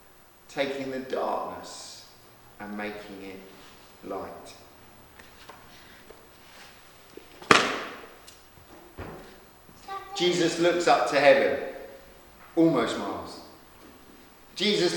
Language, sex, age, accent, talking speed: English, male, 30-49, British, 60 wpm